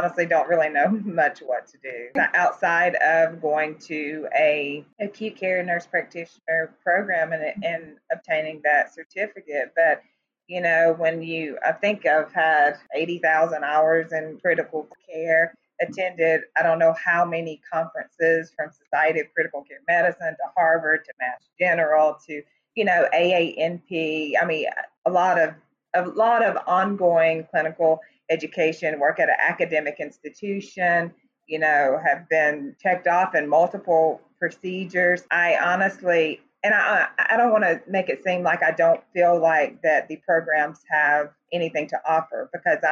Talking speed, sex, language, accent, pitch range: 150 wpm, female, English, American, 150-175 Hz